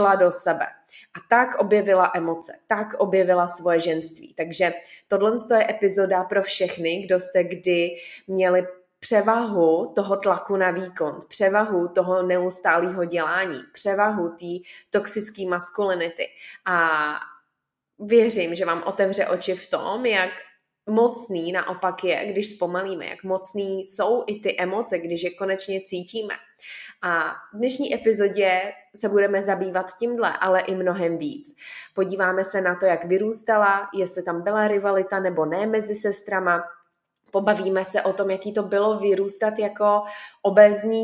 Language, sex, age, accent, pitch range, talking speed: Czech, female, 20-39, native, 185-210 Hz, 135 wpm